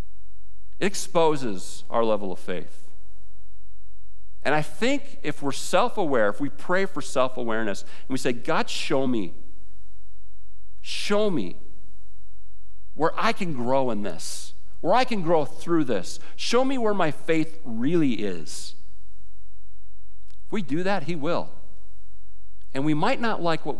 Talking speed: 140 wpm